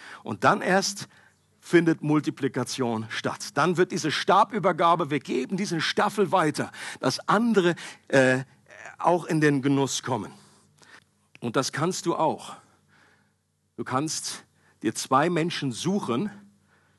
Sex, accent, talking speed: male, German, 120 wpm